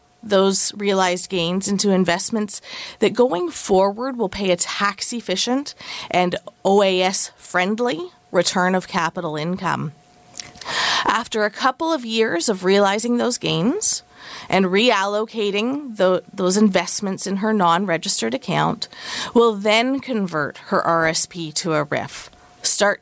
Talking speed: 115 wpm